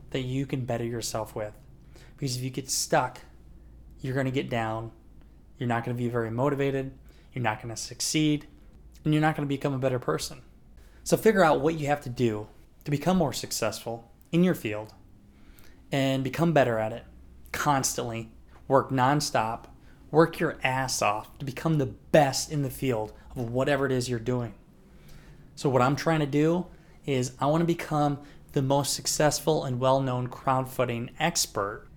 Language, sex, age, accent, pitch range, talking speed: English, male, 20-39, American, 120-150 Hz, 170 wpm